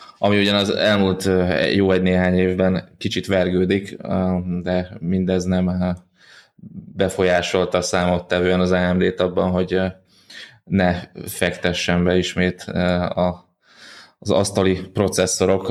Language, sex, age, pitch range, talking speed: Hungarian, male, 20-39, 90-95 Hz, 95 wpm